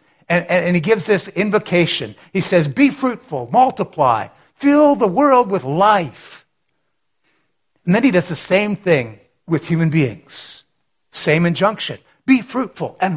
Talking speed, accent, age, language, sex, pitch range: 140 wpm, American, 60-79, English, male, 145-195 Hz